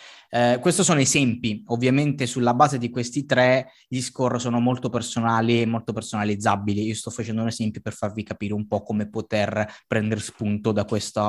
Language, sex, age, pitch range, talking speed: Italian, male, 20-39, 105-120 Hz, 180 wpm